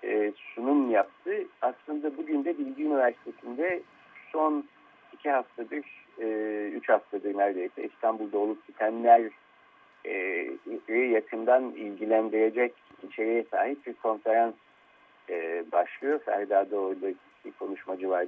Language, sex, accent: Turkish, male, native